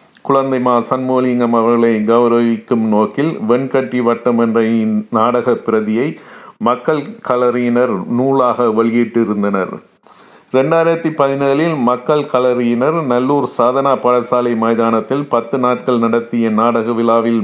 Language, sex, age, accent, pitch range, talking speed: Tamil, male, 50-69, native, 115-130 Hz, 95 wpm